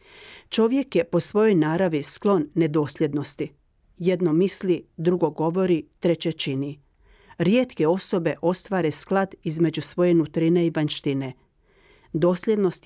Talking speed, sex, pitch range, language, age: 105 wpm, female, 155-190 Hz, Croatian, 40-59